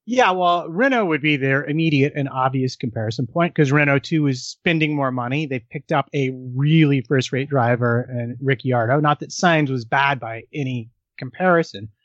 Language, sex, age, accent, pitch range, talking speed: English, male, 30-49, American, 130-170 Hz, 175 wpm